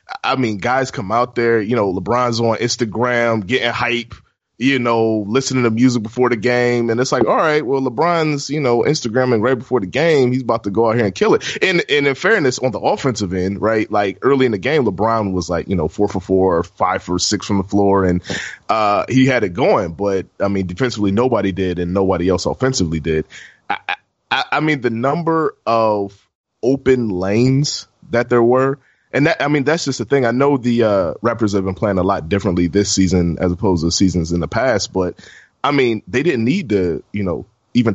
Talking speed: 220 wpm